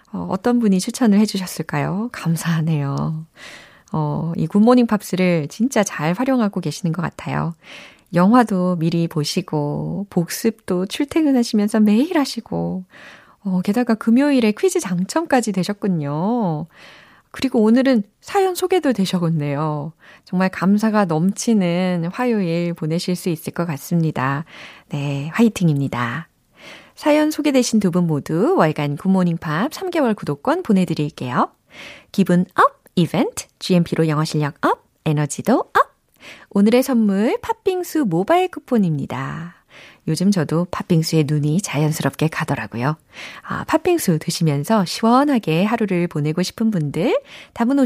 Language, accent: Korean, native